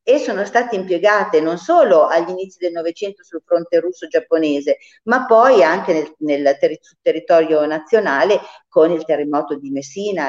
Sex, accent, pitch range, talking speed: female, native, 160-200 Hz, 150 wpm